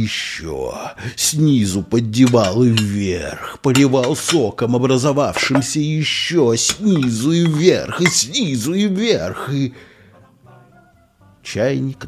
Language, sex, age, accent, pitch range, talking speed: Russian, male, 50-69, native, 90-120 Hz, 90 wpm